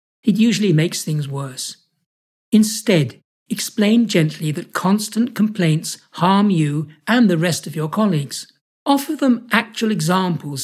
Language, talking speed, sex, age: English, 130 wpm, male, 60-79